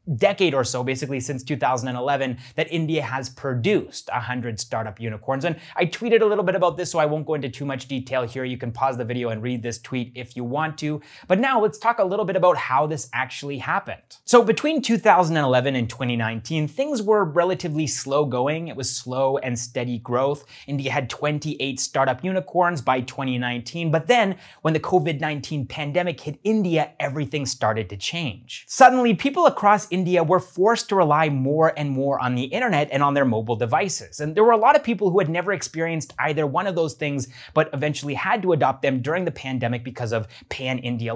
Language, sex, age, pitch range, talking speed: English, male, 30-49, 130-175 Hz, 205 wpm